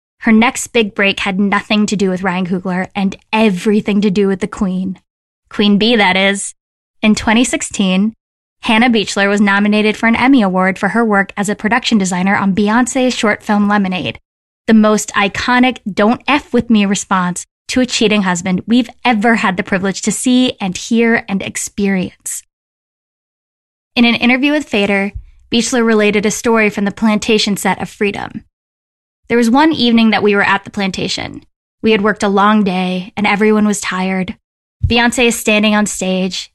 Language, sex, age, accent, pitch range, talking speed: English, female, 10-29, American, 200-230 Hz, 175 wpm